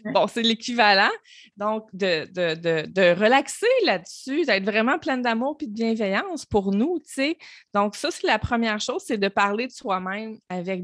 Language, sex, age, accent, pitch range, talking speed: French, female, 20-39, Canadian, 185-240 Hz, 185 wpm